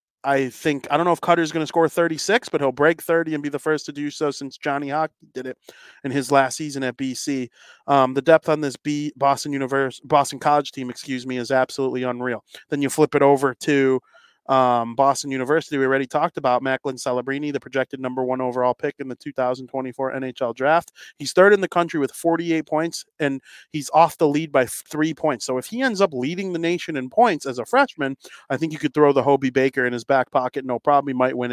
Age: 30-49